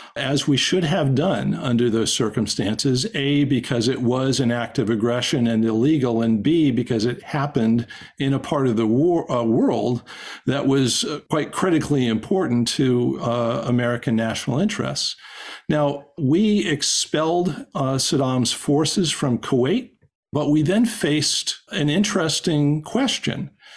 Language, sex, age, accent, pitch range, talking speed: English, male, 50-69, American, 120-155 Hz, 145 wpm